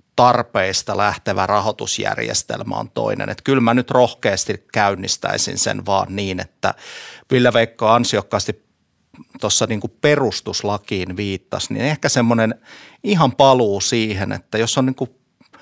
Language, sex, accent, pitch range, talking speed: Finnish, male, native, 100-125 Hz, 125 wpm